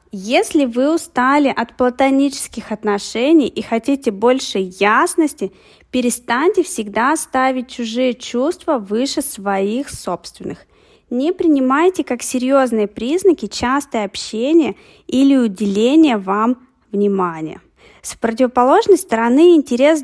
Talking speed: 100 wpm